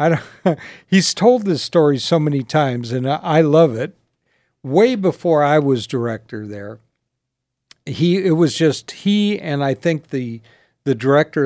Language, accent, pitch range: English, American, 120-160 Hz